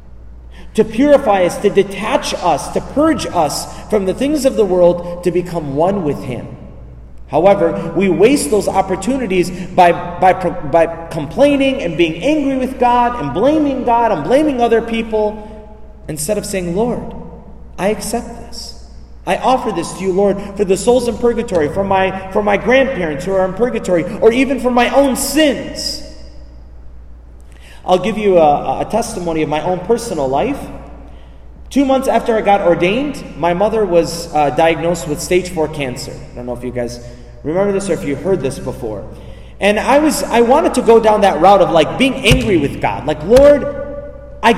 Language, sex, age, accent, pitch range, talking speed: English, male, 30-49, American, 160-245 Hz, 180 wpm